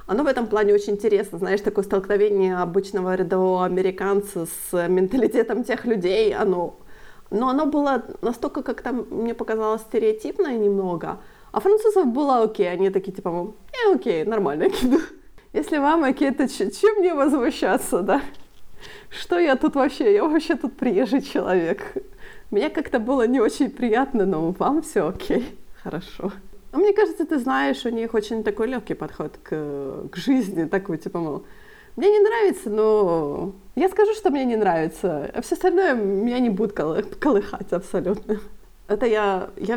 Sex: female